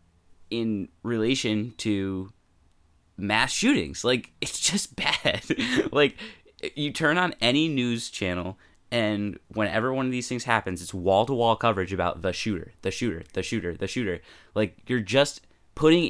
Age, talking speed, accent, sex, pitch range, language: 20-39, 145 wpm, American, male, 95-125 Hz, English